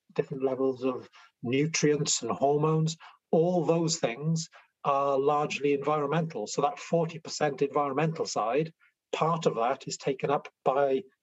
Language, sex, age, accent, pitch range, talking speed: English, male, 30-49, British, 130-165 Hz, 130 wpm